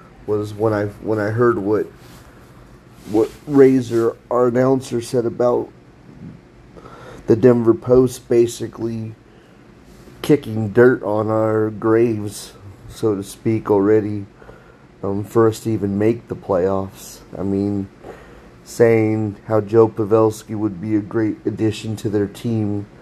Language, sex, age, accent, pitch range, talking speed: English, male, 30-49, American, 100-115 Hz, 125 wpm